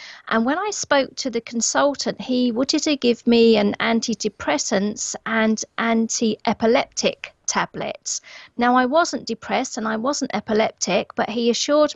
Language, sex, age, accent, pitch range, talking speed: English, female, 40-59, British, 230-295 Hz, 140 wpm